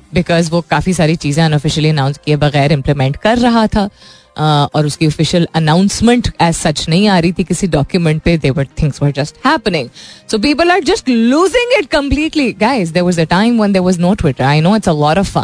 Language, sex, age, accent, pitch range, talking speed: Hindi, female, 20-39, native, 160-225 Hz, 50 wpm